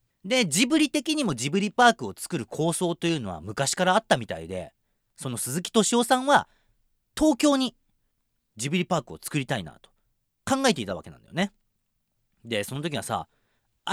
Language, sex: Japanese, male